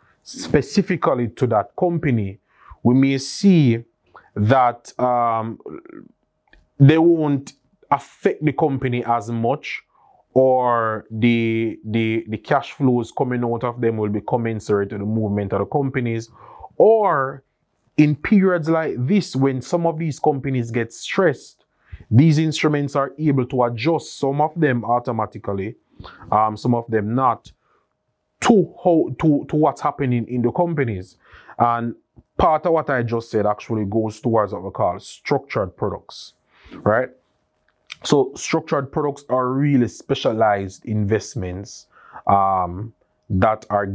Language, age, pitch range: English, 30-49, 110-140 Hz